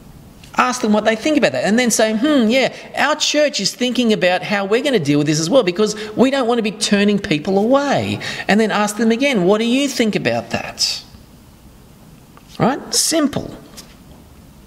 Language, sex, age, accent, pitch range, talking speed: English, male, 40-59, Australian, 175-230 Hz, 195 wpm